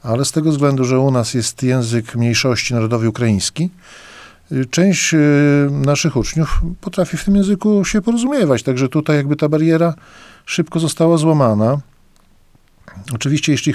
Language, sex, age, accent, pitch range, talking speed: Polish, male, 50-69, native, 115-145 Hz, 135 wpm